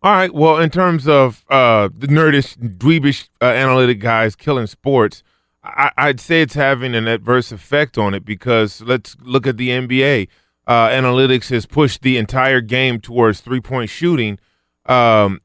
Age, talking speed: 20-39, 165 wpm